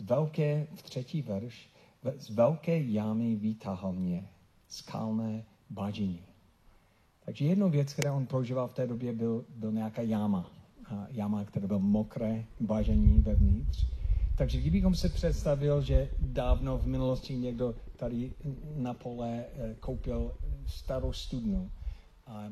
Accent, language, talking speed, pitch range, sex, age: native, Czech, 120 wpm, 100-130 Hz, male, 50-69